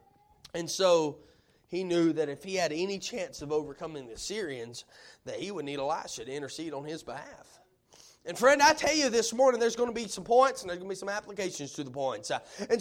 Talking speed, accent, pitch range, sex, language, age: 225 wpm, American, 225-290 Hz, male, English, 30-49